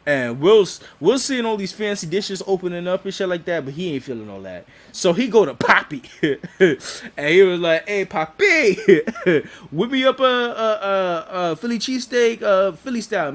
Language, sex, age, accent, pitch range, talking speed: English, male, 20-39, American, 140-205 Hz, 195 wpm